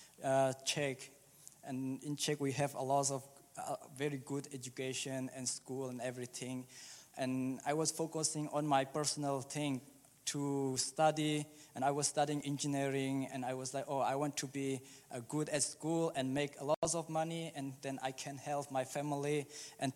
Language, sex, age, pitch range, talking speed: English, male, 20-39, 135-155 Hz, 175 wpm